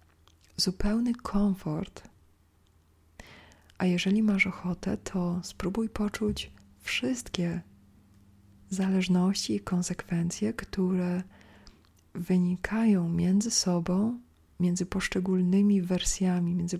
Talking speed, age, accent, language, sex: 75 wpm, 40-59, native, Polish, female